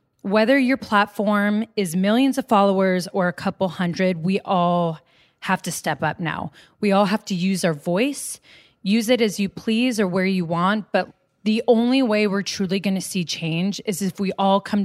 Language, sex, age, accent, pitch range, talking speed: English, female, 20-39, American, 185-235 Hz, 200 wpm